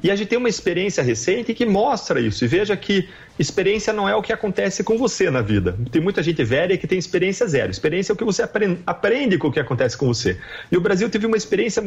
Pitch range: 150-205 Hz